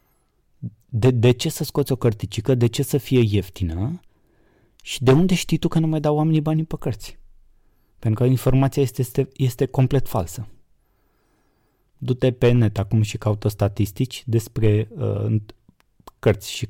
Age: 20-39